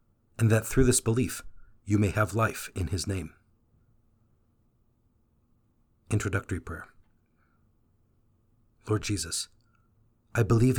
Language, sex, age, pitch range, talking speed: English, male, 40-59, 105-115 Hz, 100 wpm